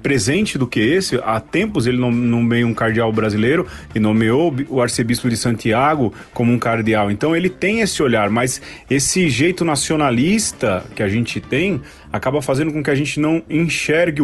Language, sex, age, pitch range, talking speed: Portuguese, male, 40-59, 115-160 Hz, 175 wpm